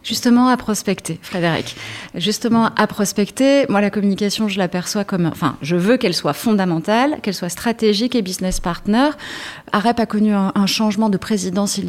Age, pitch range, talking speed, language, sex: 30-49, 170-215 Hz, 165 wpm, French, female